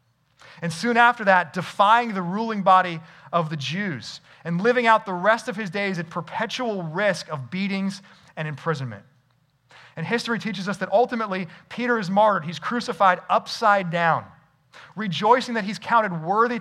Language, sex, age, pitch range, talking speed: English, male, 30-49, 135-205 Hz, 160 wpm